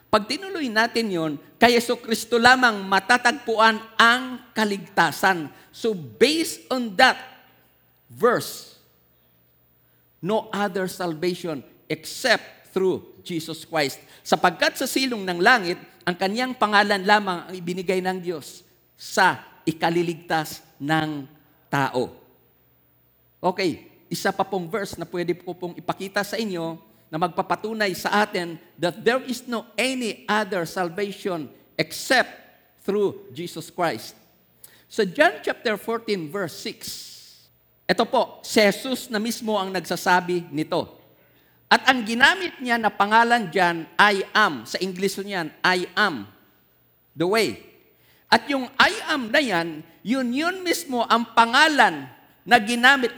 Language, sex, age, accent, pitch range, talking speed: Filipino, male, 50-69, native, 165-230 Hz, 125 wpm